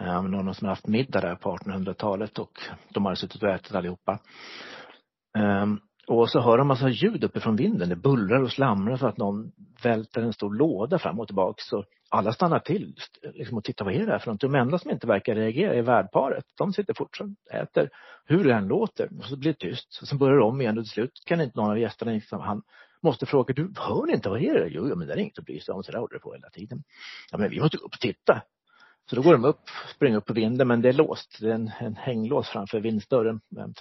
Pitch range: 105-125 Hz